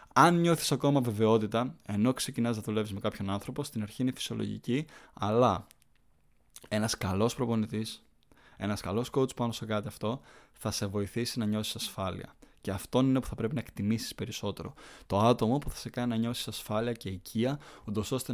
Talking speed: 175 wpm